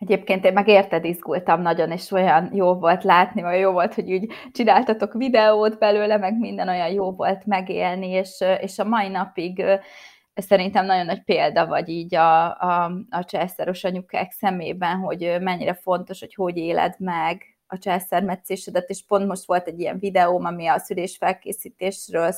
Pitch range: 180-200 Hz